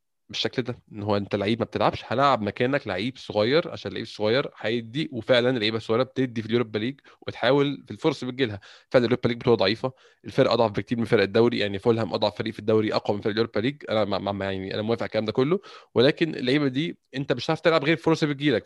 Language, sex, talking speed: Arabic, male, 220 wpm